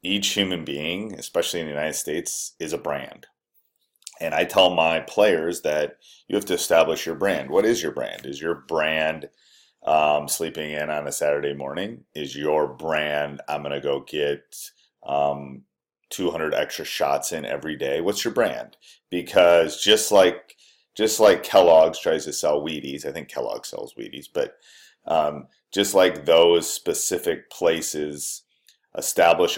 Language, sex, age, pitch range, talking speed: English, male, 30-49, 75-110 Hz, 160 wpm